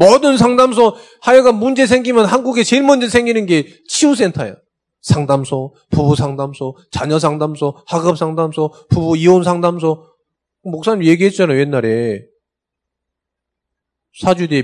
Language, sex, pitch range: Korean, male, 145-215 Hz